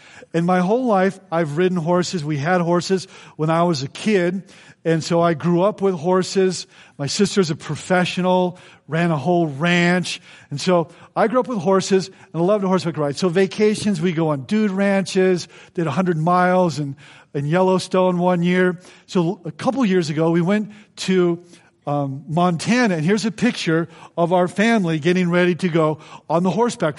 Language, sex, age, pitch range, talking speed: English, male, 50-69, 160-195 Hz, 180 wpm